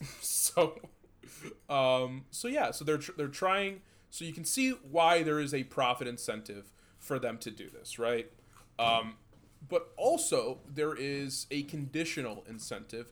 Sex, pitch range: male, 110-160 Hz